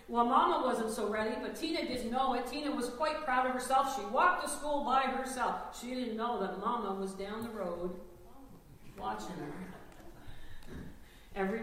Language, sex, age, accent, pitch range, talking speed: English, female, 50-69, American, 175-235 Hz, 175 wpm